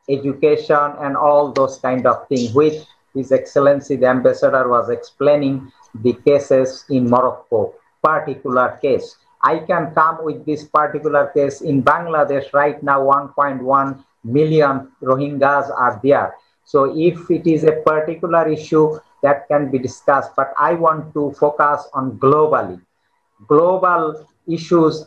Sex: male